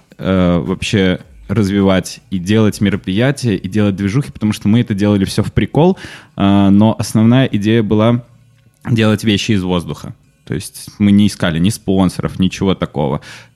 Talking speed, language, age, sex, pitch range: 145 wpm, Russian, 20-39, male, 95-115 Hz